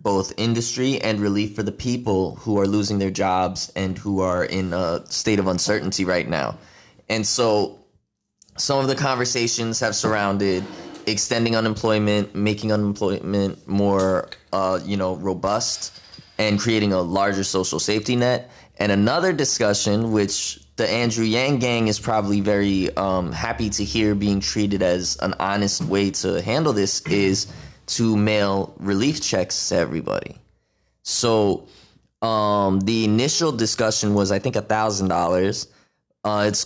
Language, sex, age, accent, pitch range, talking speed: English, male, 20-39, American, 100-120 Hz, 140 wpm